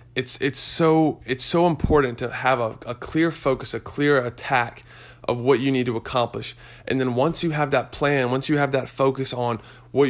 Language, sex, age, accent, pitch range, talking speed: English, male, 20-39, American, 120-135 Hz, 210 wpm